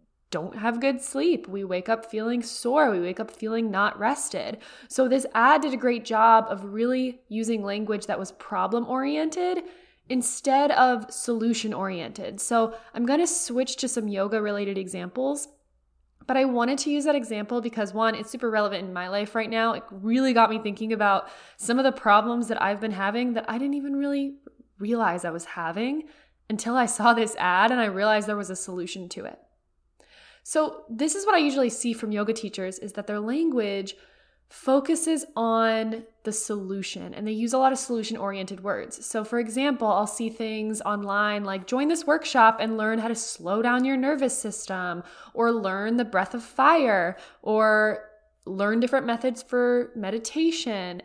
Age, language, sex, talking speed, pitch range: 20-39, English, female, 180 wpm, 210-260 Hz